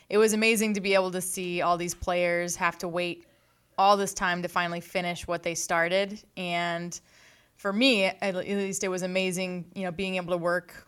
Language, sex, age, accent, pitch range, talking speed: English, female, 20-39, American, 165-185 Hz, 205 wpm